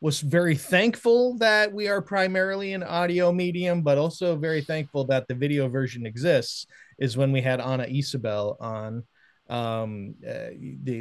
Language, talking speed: English, 160 wpm